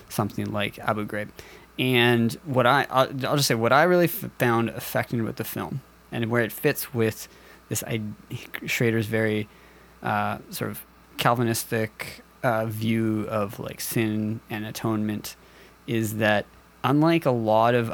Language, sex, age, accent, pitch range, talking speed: English, male, 20-39, American, 110-130 Hz, 145 wpm